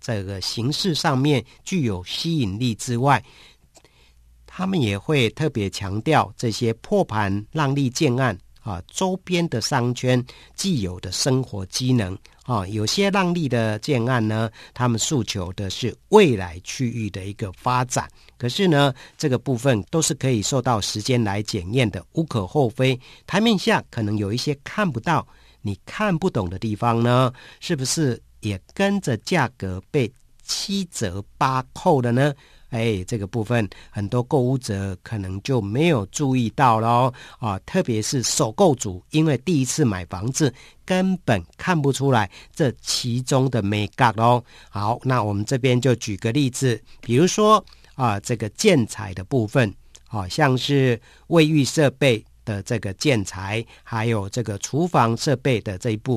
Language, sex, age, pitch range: Chinese, male, 50-69, 105-145 Hz